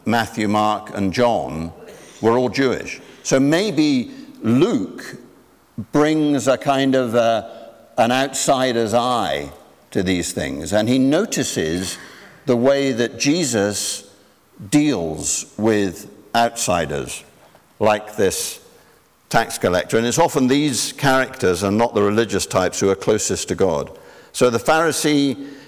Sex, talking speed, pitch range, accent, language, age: male, 125 wpm, 100-140 Hz, British, English, 60-79